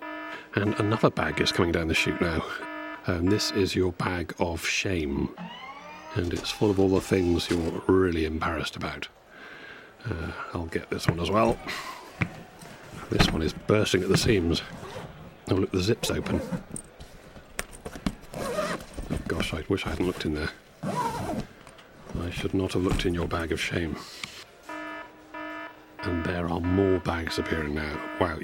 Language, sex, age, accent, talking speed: English, male, 40-59, British, 155 wpm